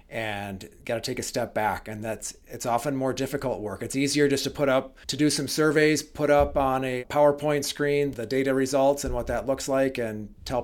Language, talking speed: English, 225 wpm